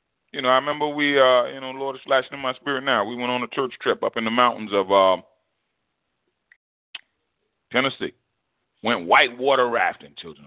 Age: 30-49